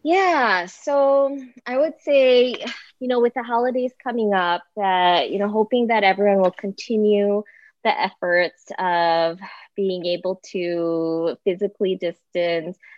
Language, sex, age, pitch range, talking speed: English, female, 20-39, 170-210 Hz, 130 wpm